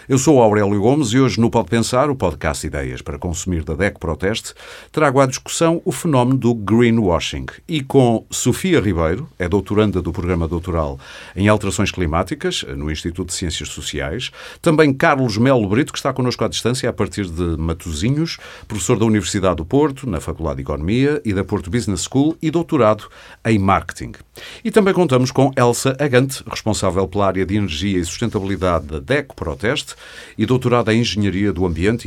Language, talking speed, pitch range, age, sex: Portuguese, 175 wpm, 90-125 Hz, 50-69, male